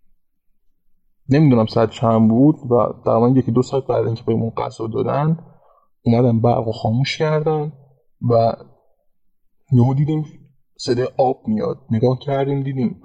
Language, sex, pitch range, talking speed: Persian, male, 115-140 Hz, 125 wpm